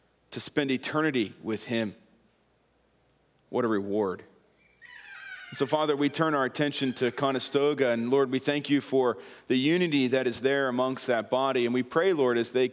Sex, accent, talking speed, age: male, American, 170 wpm, 40-59